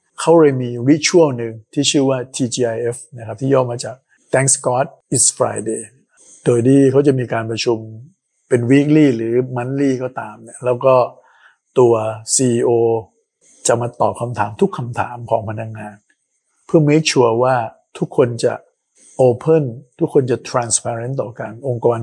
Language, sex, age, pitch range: Thai, male, 60-79, 115-135 Hz